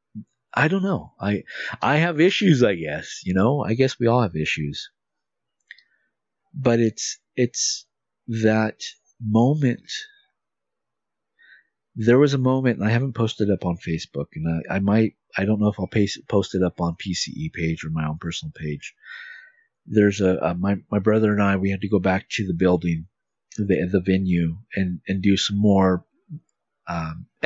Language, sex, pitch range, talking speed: English, male, 95-125 Hz, 175 wpm